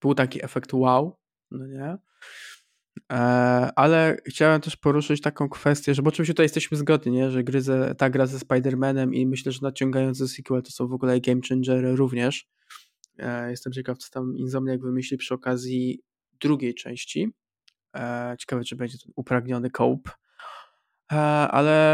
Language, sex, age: Polish, male, 20-39